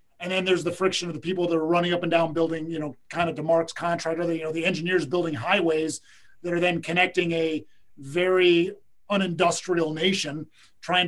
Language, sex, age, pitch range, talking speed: English, male, 30-49, 160-180 Hz, 205 wpm